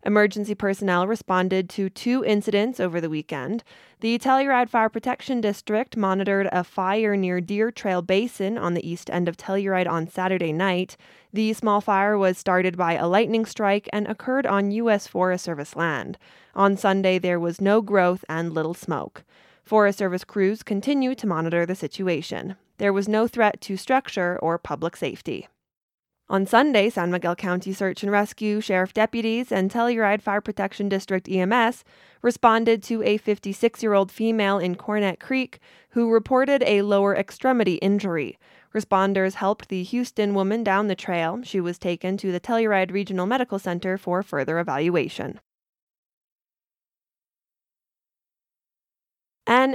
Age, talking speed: 20-39, 150 wpm